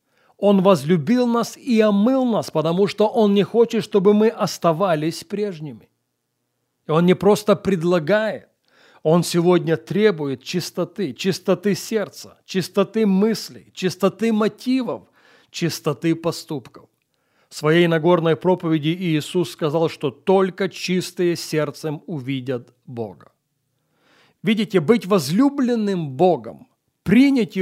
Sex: male